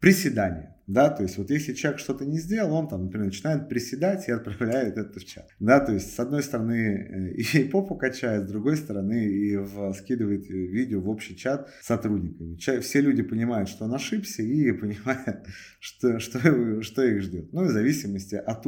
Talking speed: 185 wpm